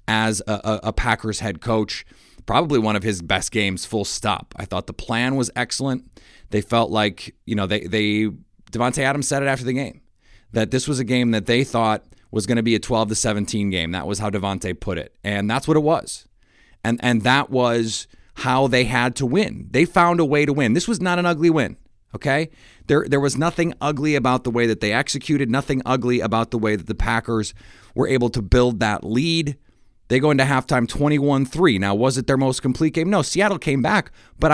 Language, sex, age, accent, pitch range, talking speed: English, male, 30-49, American, 110-145 Hz, 220 wpm